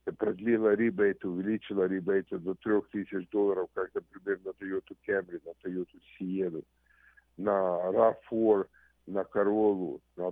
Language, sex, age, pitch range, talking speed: Russian, male, 50-69, 95-110 Hz, 115 wpm